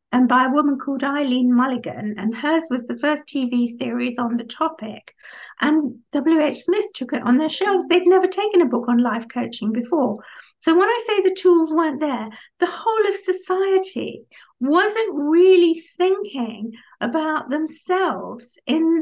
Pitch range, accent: 245-340 Hz, British